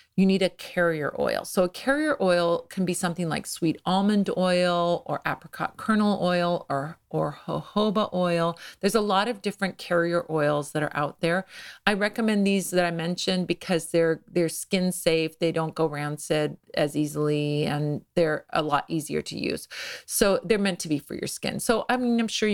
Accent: American